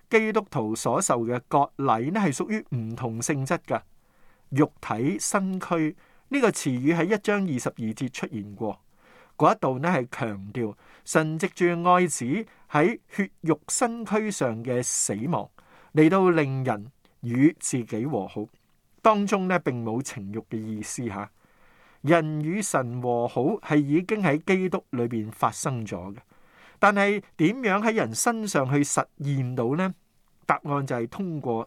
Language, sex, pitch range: Chinese, male, 120-185 Hz